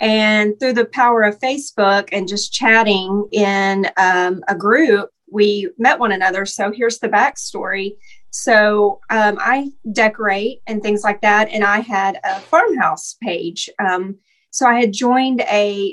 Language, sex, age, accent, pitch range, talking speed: English, female, 30-49, American, 200-240 Hz, 155 wpm